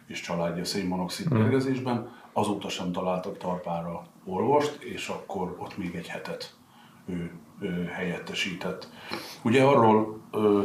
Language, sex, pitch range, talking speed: Hungarian, male, 90-105 Hz, 120 wpm